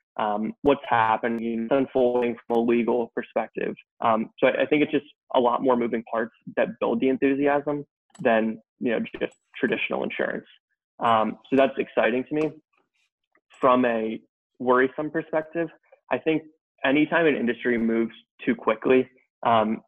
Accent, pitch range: American, 115-140 Hz